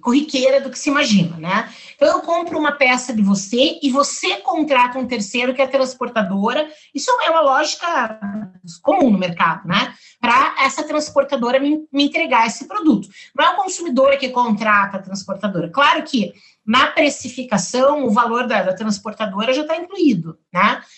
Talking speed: 170 wpm